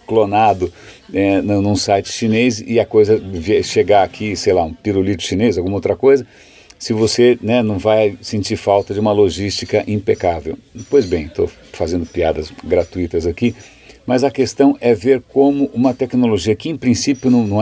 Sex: male